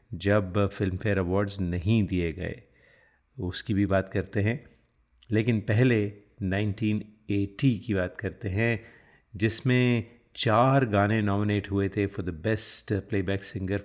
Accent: native